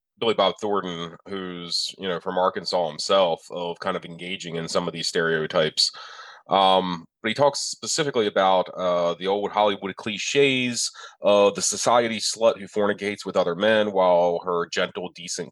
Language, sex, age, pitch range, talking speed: English, male, 30-49, 90-105 Hz, 160 wpm